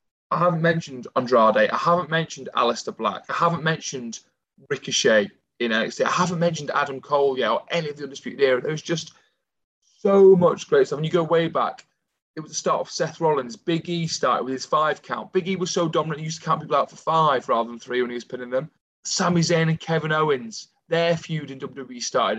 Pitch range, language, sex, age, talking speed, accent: 125-170 Hz, English, male, 20-39, 225 wpm, British